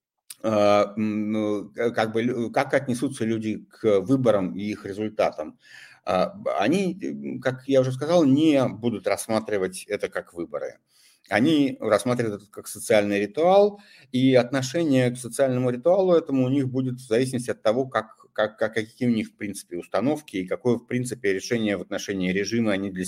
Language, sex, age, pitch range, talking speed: Russian, male, 50-69, 95-130 Hz, 150 wpm